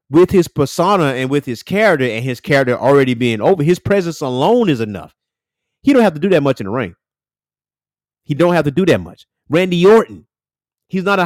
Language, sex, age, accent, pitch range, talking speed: English, male, 30-49, American, 120-165 Hz, 215 wpm